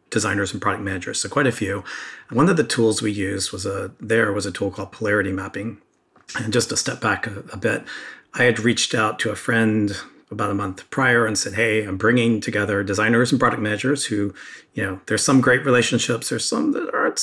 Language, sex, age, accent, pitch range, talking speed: English, male, 40-59, American, 105-125 Hz, 215 wpm